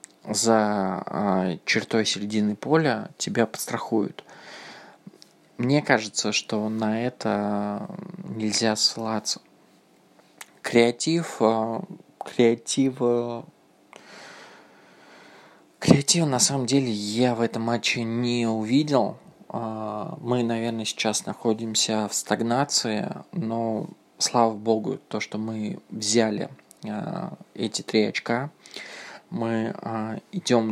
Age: 20-39